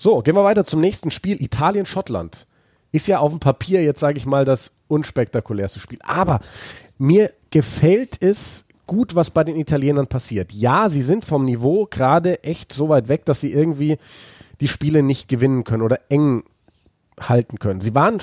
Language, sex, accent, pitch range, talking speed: German, male, German, 125-160 Hz, 180 wpm